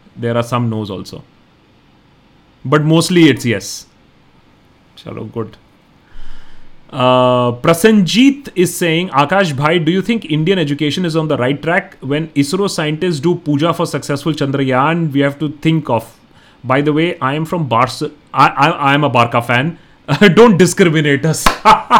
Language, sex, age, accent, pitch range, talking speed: Hindi, male, 30-49, native, 120-160 Hz, 155 wpm